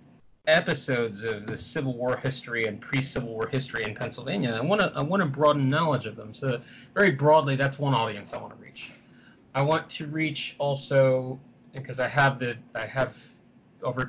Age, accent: 30-49, American